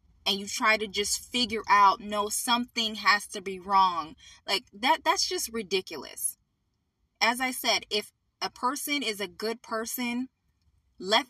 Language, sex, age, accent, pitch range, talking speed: English, female, 20-39, American, 165-230 Hz, 155 wpm